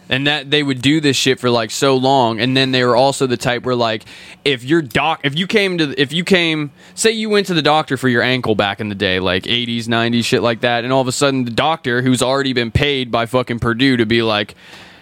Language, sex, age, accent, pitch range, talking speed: English, male, 20-39, American, 125-165 Hz, 265 wpm